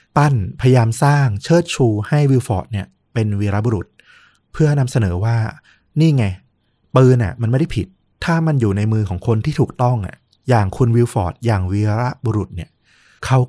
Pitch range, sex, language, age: 100-125 Hz, male, Thai, 20-39